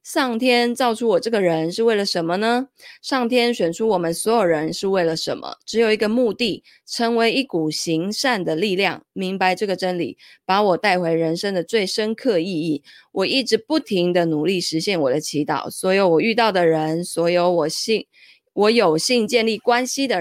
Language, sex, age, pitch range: Chinese, female, 20-39, 165-225 Hz